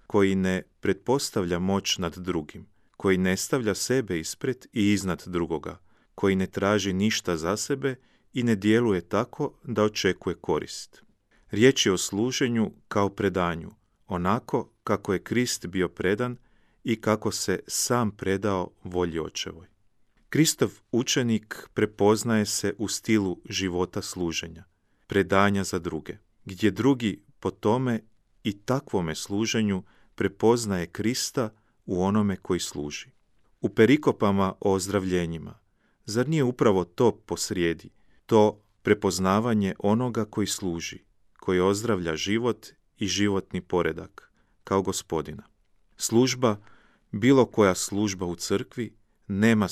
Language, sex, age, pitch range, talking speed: Croatian, male, 40-59, 95-115 Hz, 120 wpm